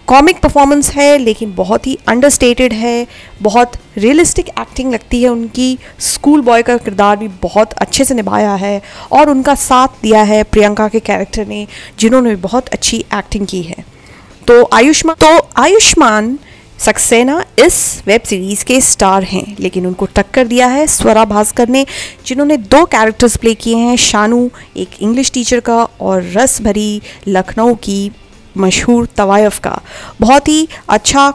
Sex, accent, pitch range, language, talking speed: female, native, 205-250 Hz, Hindi, 155 wpm